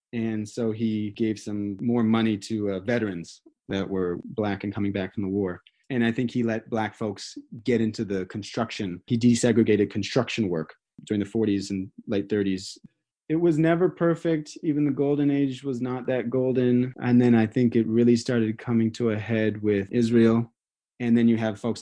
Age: 30-49